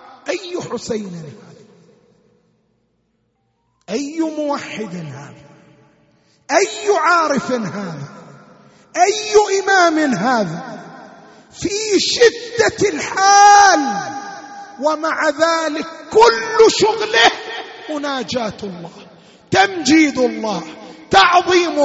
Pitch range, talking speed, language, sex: 205-315 Hz, 65 wpm, Arabic, male